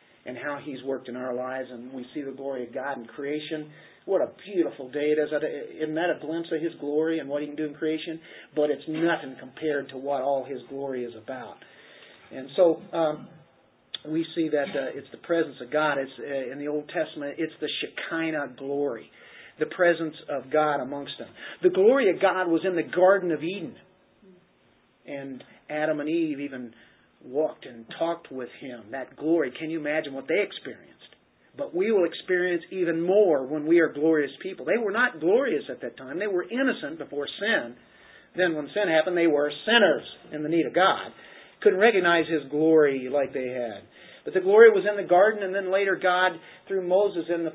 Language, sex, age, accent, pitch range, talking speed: English, male, 50-69, American, 145-180 Hz, 200 wpm